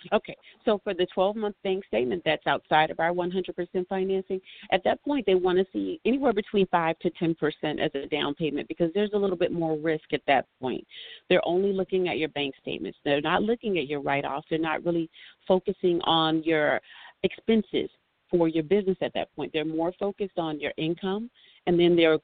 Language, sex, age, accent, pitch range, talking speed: English, female, 40-59, American, 160-190 Hz, 200 wpm